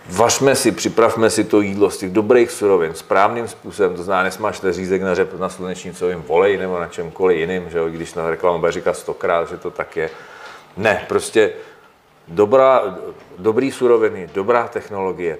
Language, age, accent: Czech, 40-59, native